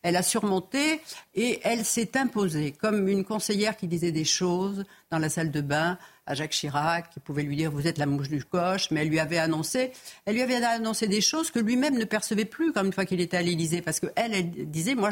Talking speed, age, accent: 255 wpm, 60-79, French